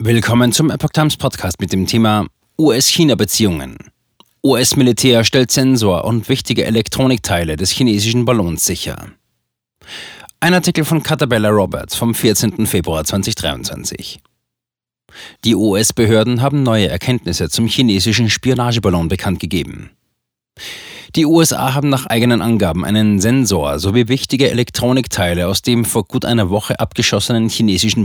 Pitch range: 100-125 Hz